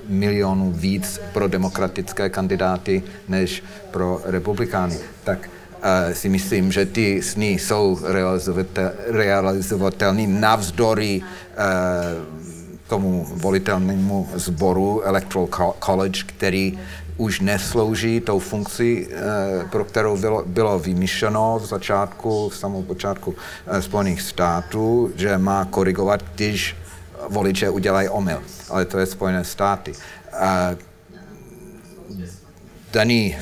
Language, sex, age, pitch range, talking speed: Slovak, male, 50-69, 90-100 Hz, 100 wpm